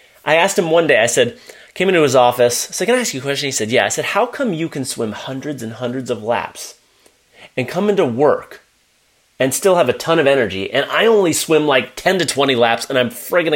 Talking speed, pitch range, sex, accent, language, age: 250 wpm, 125-210 Hz, male, American, English, 30-49